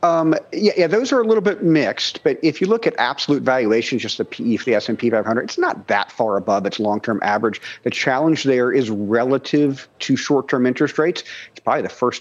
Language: English